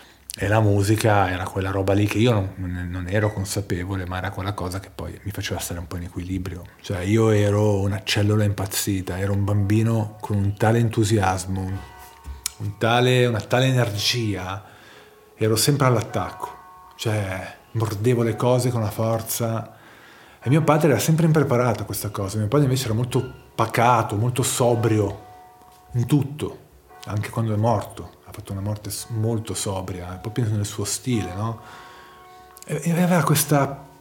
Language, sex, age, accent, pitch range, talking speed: Italian, male, 40-59, native, 100-130 Hz, 155 wpm